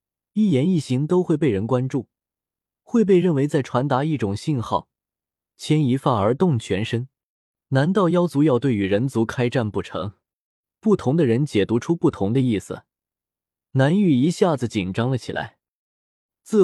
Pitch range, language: 115-160 Hz, Chinese